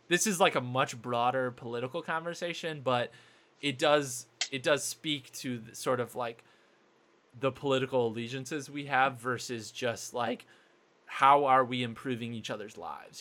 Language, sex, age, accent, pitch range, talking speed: English, male, 20-39, American, 120-145 Hz, 150 wpm